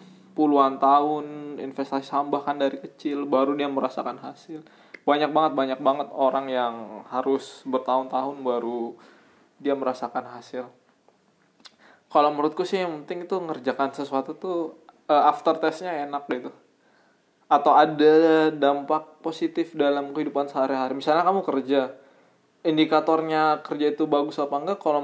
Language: Indonesian